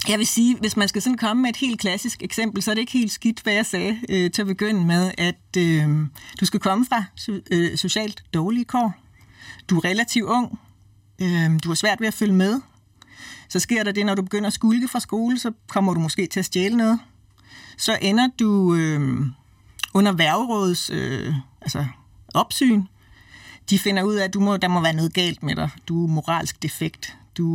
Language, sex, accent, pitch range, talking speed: Danish, female, native, 155-210 Hz, 205 wpm